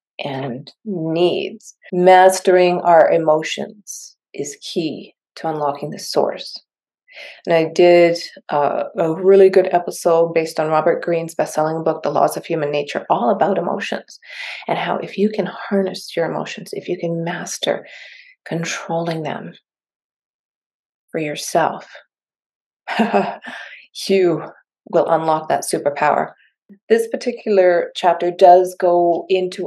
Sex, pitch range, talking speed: female, 170-200 Hz, 120 wpm